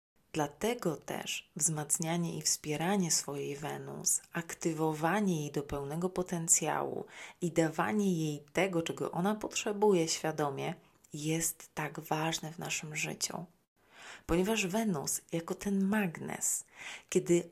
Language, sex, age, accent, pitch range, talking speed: Polish, female, 30-49, native, 150-190 Hz, 110 wpm